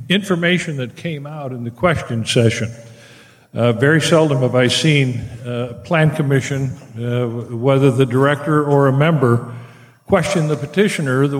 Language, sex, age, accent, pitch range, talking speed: English, male, 50-69, American, 120-150 Hz, 155 wpm